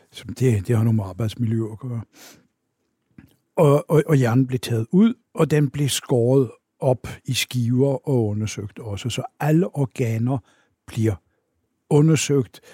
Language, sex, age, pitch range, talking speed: Danish, male, 60-79, 115-135 Hz, 135 wpm